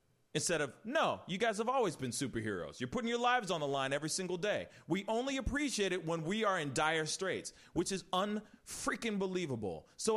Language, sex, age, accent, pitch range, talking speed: English, male, 30-49, American, 125-205 Hz, 195 wpm